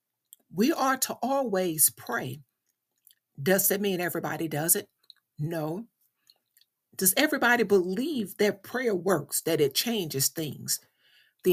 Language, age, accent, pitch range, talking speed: English, 60-79, American, 165-230 Hz, 120 wpm